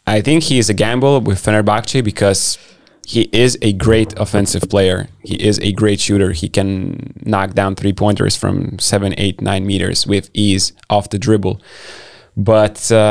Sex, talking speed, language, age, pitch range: male, 170 wpm, English, 20-39, 95-115 Hz